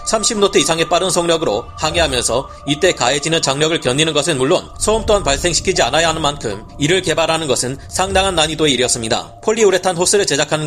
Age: 30-49